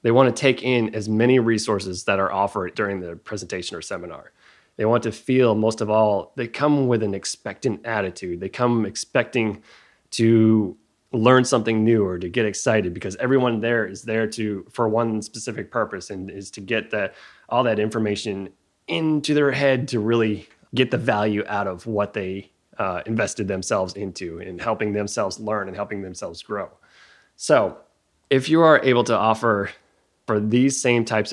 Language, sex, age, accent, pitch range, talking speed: English, male, 20-39, American, 105-120 Hz, 180 wpm